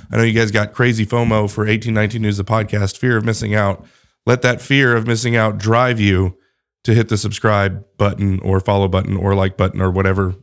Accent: American